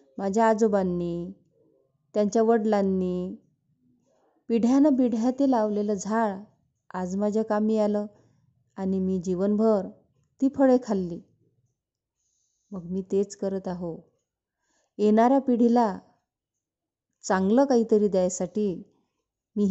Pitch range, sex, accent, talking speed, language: 190-235 Hz, female, native, 90 wpm, Marathi